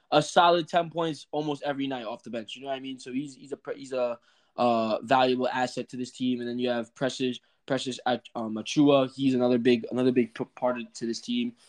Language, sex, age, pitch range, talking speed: English, male, 20-39, 130-160 Hz, 235 wpm